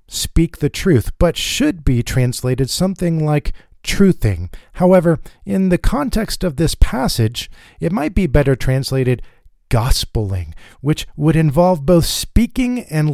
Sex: male